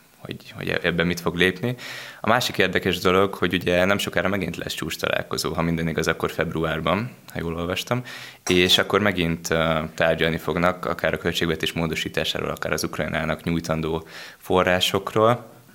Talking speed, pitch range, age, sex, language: 150 wpm, 85-95 Hz, 20-39, male, Hungarian